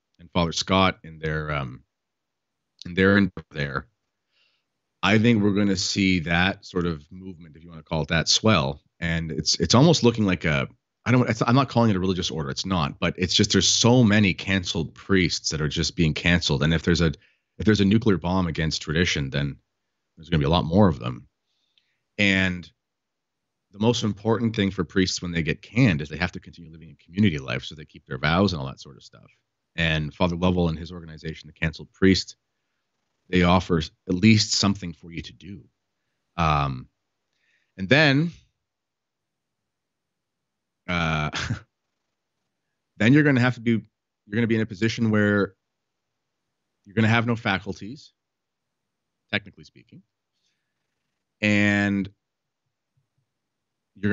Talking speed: 175 wpm